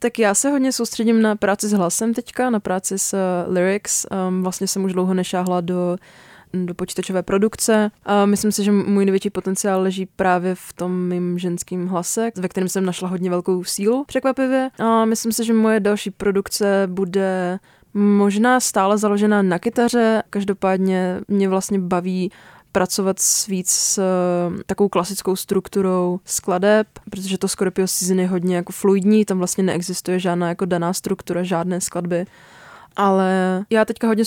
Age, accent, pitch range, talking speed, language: 20-39, native, 185-200 Hz, 155 wpm, Czech